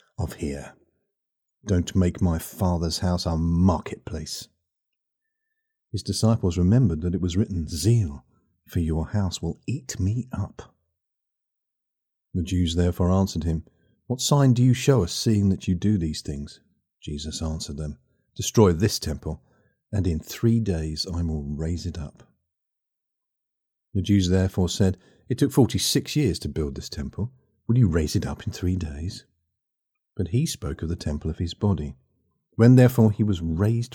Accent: British